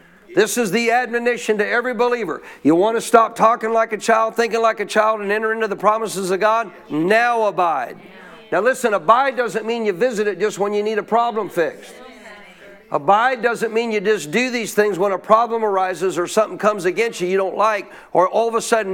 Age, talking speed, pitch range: 50-69, 215 wpm, 190-230 Hz